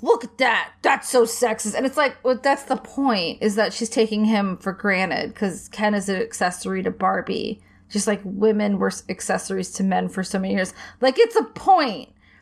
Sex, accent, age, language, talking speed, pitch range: female, American, 20-39, English, 200 wpm, 200-245 Hz